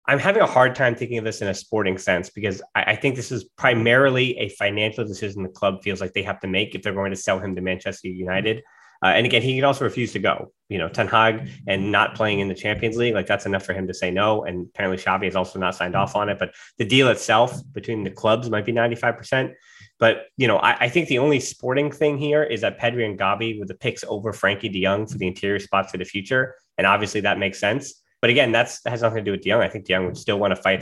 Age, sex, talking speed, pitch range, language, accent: 20-39, male, 275 wpm, 95-125 Hz, English, American